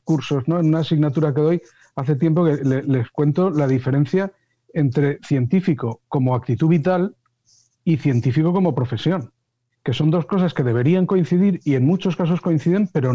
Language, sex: Spanish, male